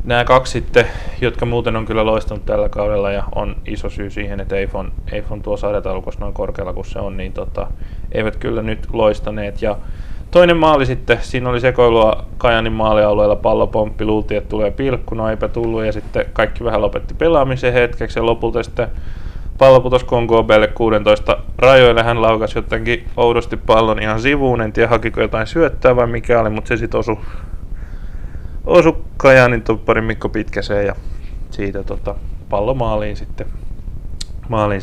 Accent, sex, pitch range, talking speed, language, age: native, male, 100-115 Hz, 160 wpm, Finnish, 20-39